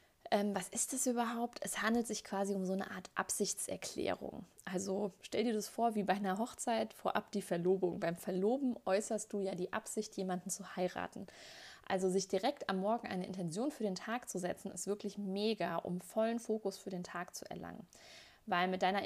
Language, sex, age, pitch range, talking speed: German, female, 20-39, 190-230 Hz, 195 wpm